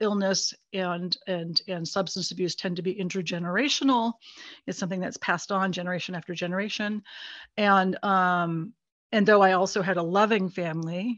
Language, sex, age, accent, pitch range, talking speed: English, female, 50-69, American, 175-210 Hz, 150 wpm